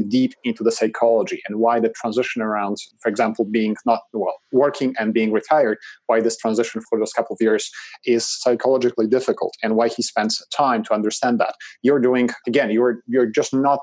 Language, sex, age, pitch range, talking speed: English, male, 30-49, 115-140 Hz, 190 wpm